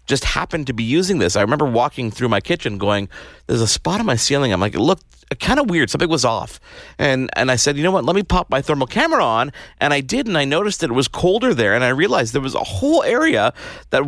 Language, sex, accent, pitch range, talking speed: English, male, American, 110-145 Hz, 270 wpm